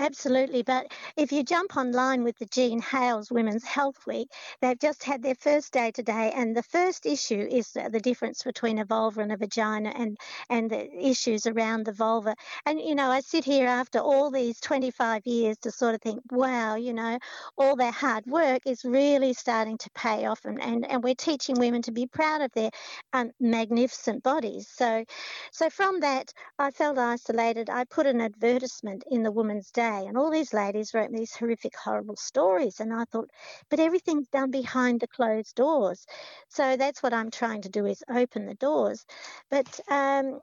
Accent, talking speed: Australian, 190 wpm